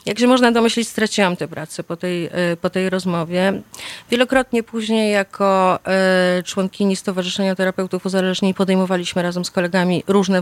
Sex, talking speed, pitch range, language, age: female, 140 wpm, 180-215 Hz, Polish, 30-49